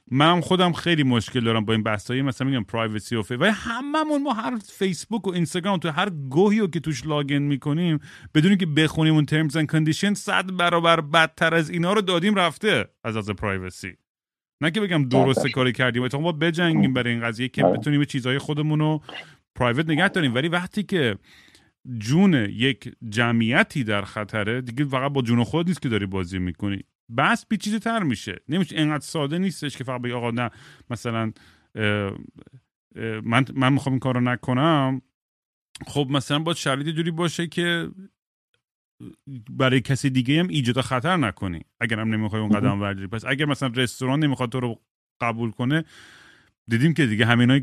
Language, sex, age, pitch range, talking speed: Persian, male, 30-49, 120-170 Hz, 165 wpm